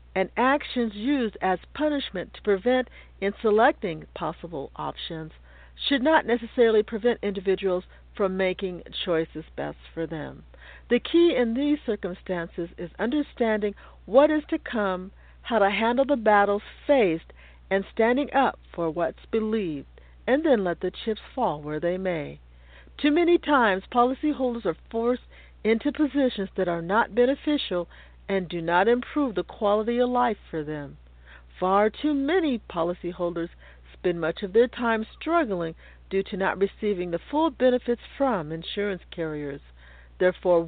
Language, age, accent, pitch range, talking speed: English, 50-69, American, 180-255 Hz, 145 wpm